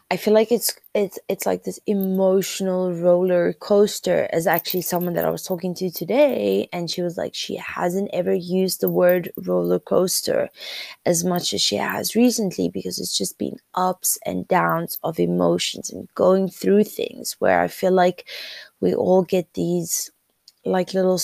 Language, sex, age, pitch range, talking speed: English, female, 20-39, 175-210 Hz, 170 wpm